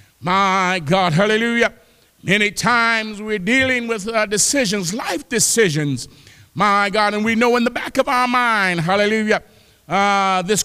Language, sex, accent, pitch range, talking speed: English, male, American, 180-225 Hz, 145 wpm